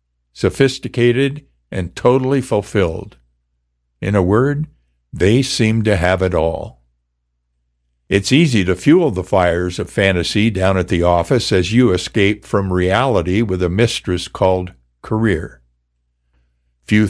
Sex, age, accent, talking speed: male, 60-79, American, 125 wpm